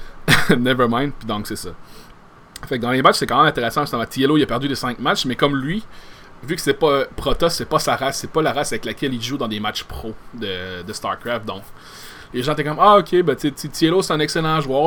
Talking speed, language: 245 wpm, French